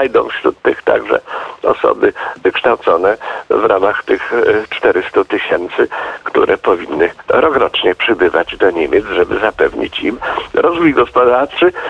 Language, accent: Polish, native